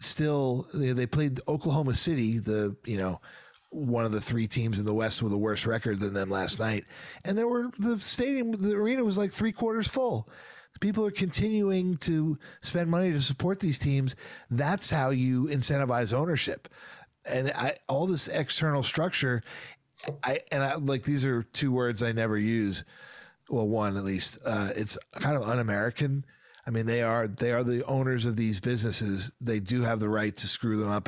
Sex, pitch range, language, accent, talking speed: male, 110-145 Hz, English, American, 190 wpm